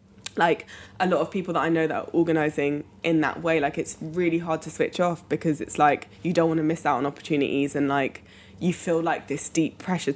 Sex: female